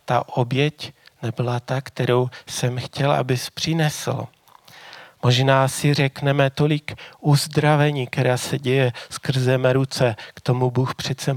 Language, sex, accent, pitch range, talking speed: Czech, male, native, 125-145 Hz, 125 wpm